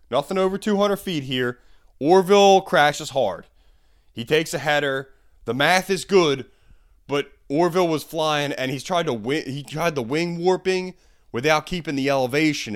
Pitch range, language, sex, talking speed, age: 100-150 Hz, English, male, 160 wpm, 30-49